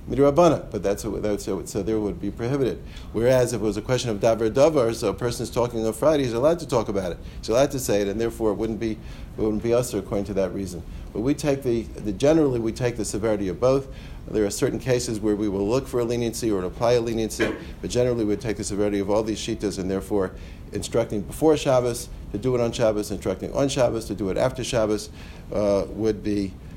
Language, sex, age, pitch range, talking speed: English, male, 50-69, 95-115 Hz, 240 wpm